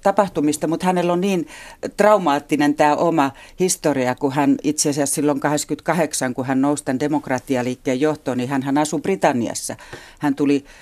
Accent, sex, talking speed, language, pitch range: native, female, 150 wpm, Finnish, 140-170 Hz